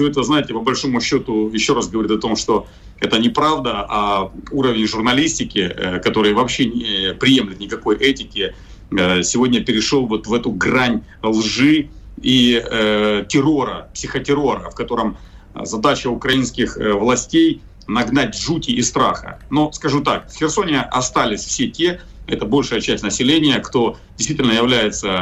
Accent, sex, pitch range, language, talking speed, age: native, male, 110-145 Hz, Russian, 140 wpm, 40-59